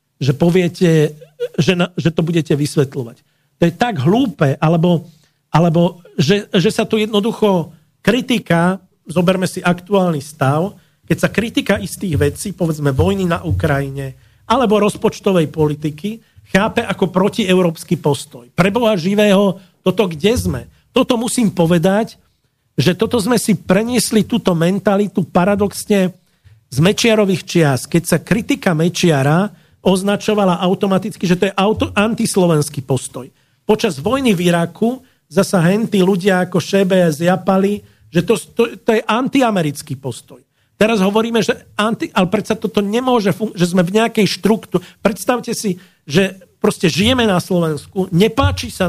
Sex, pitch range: male, 165-210 Hz